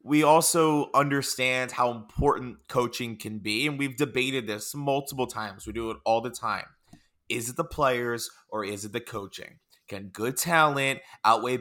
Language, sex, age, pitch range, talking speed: English, male, 30-49, 115-150 Hz, 170 wpm